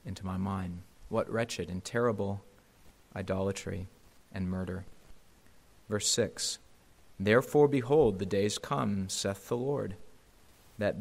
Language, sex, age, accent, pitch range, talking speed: English, male, 40-59, American, 95-115 Hz, 115 wpm